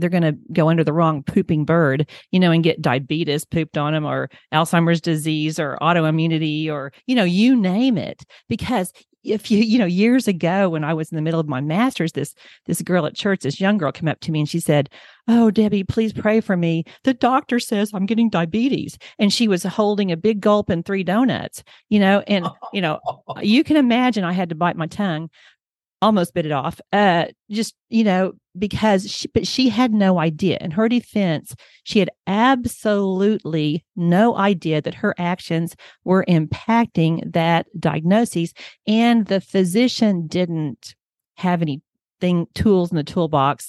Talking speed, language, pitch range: 185 wpm, English, 160-210 Hz